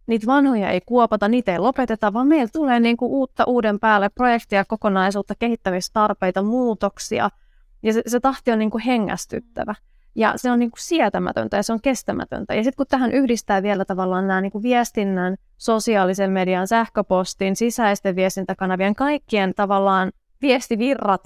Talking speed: 135 wpm